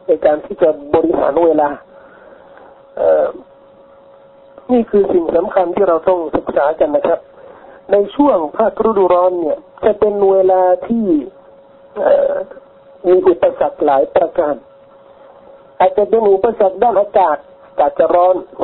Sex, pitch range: male, 180-275 Hz